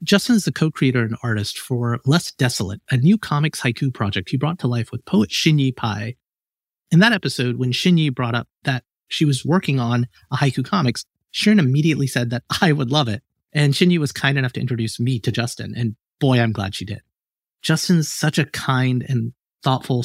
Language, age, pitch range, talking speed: English, 30-49, 115-150 Hz, 200 wpm